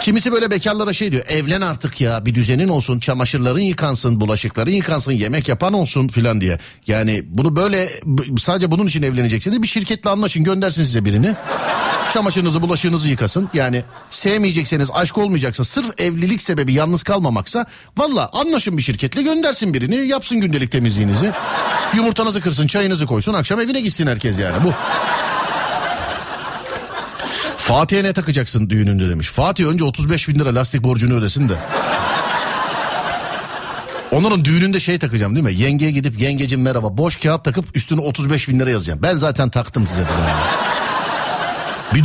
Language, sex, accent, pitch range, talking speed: Turkish, male, native, 115-180 Hz, 145 wpm